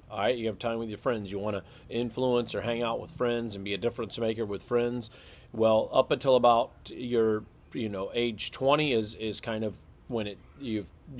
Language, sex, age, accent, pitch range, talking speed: English, male, 40-59, American, 100-120 Hz, 215 wpm